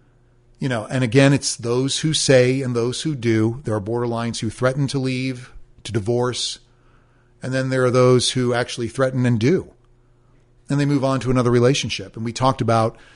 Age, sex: 40-59, male